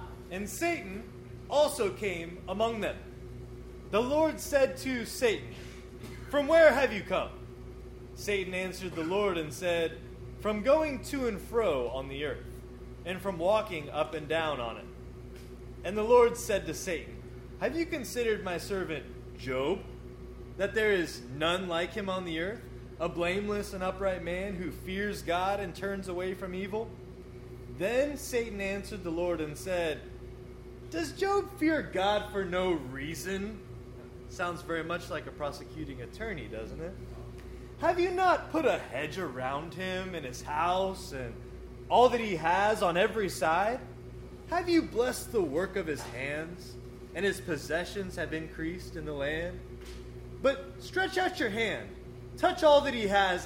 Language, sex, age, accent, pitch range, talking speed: English, male, 20-39, American, 155-220 Hz, 155 wpm